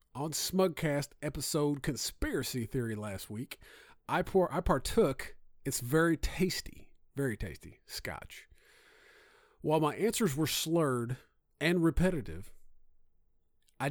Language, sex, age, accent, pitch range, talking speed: English, male, 40-59, American, 120-165 Hz, 100 wpm